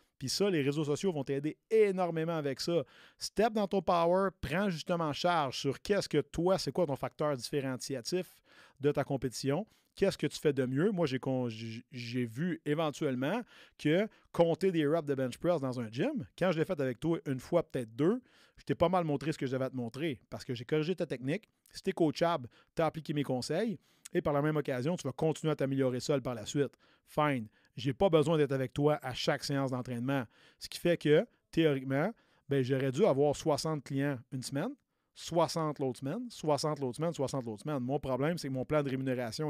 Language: French